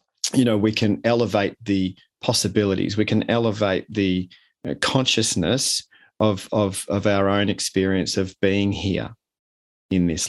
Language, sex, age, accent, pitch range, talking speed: English, male, 40-59, Australian, 95-115 Hz, 135 wpm